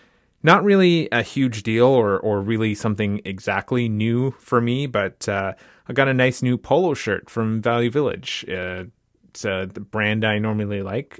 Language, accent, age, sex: English, American, 30-49, male